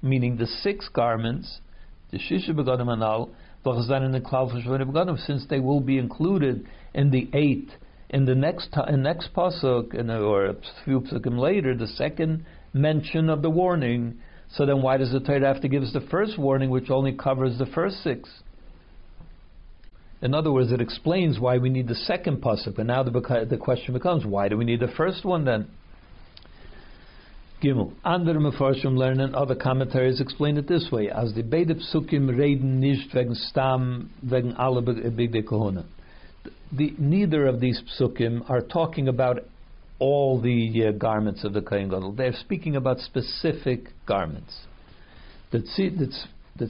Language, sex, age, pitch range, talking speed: English, male, 60-79, 120-140 Hz, 155 wpm